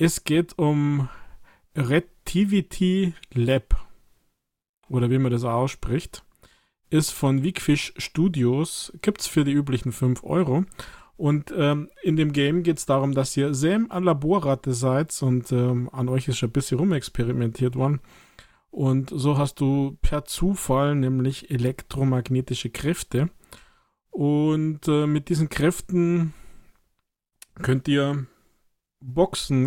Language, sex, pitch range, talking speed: German, male, 130-170 Hz, 125 wpm